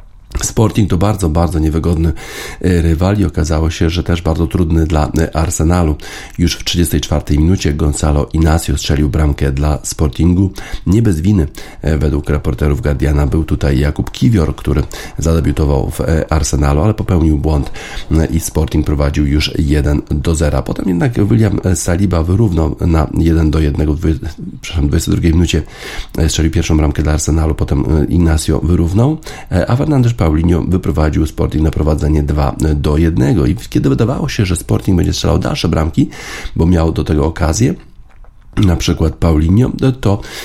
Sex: male